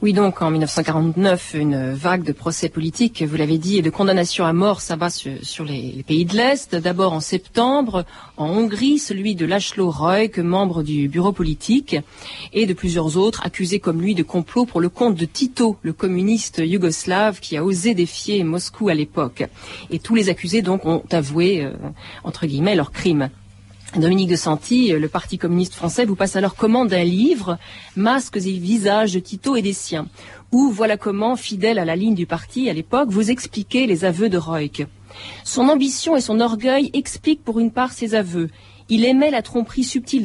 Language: French